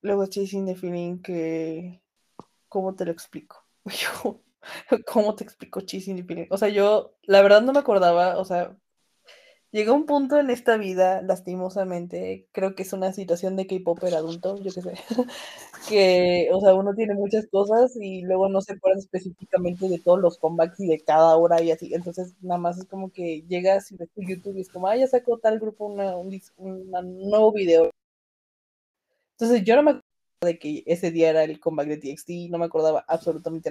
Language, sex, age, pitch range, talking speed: Spanish, female, 20-39, 170-205 Hz, 190 wpm